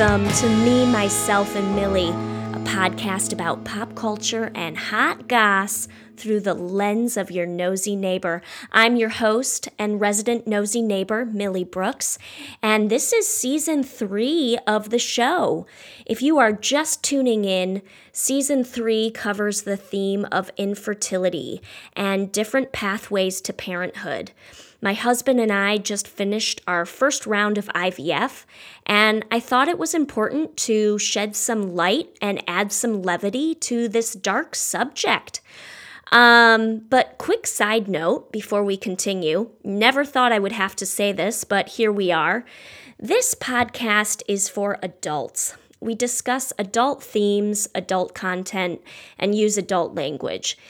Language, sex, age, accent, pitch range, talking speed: English, female, 20-39, American, 195-240 Hz, 140 wpm